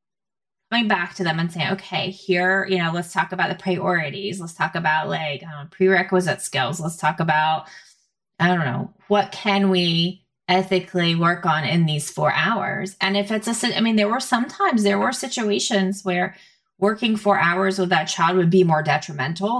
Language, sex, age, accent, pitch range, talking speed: English, female, 20-39, American, 160-195 Hz, 185 wpm